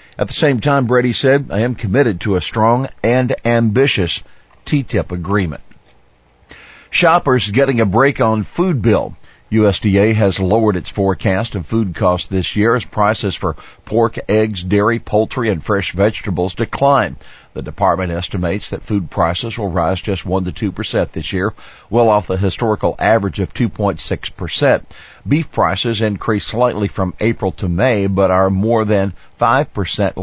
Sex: male